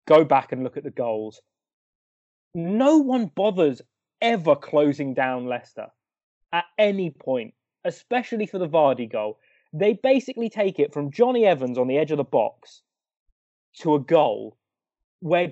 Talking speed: 150 wpm